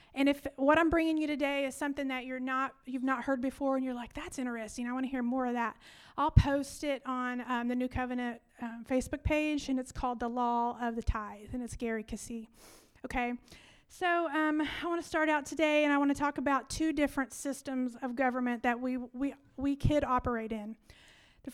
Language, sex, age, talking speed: English, female, 30-49, 225 wpm